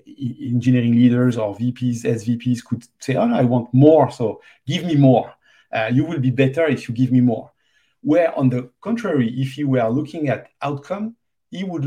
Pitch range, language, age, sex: 115-140 Hz, English, 50-69, male